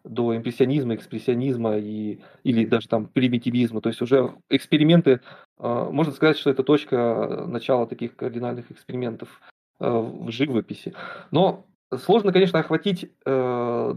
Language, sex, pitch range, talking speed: Russian, male, 125-150 Hz, 125 wpm